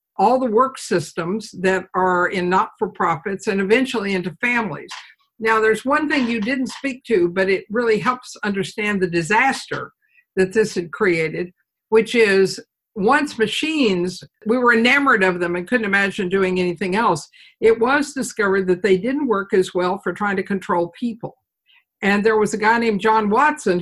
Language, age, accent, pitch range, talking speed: English, 60-79, American, 185-235 Hz, 175 wpm